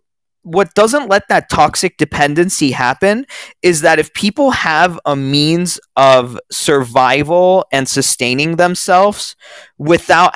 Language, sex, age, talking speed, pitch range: English, male, 20-39, 115 wpm, 135-170 Hz